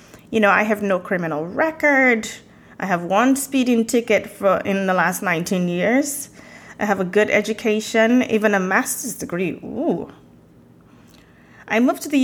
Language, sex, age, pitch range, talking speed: English, female, 30-49, 190-225 Hz, 155 wpm